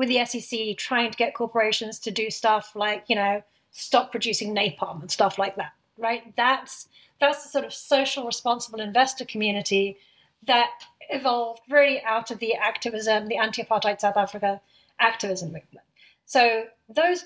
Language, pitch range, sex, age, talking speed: English, 210-265 Hz, female, 30-49, 160 wpm